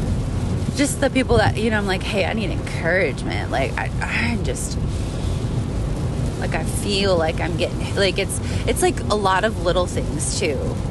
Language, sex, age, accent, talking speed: English, female, 20-39, American, 170 wpm